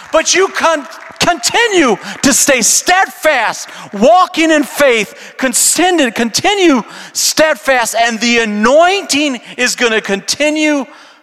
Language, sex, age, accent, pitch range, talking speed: English, male, 40-59, American, 215-295 Hz, 95 wpm